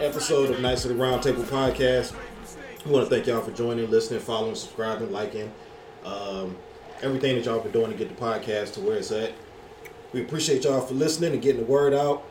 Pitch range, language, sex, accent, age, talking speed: 105-135 Hz, English, male, American, 30-49, 205 wpm